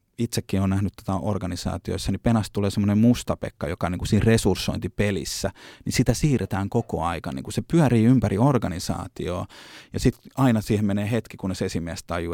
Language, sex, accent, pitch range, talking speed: Finnish, male, native, 95-115 Hz, 170 wpm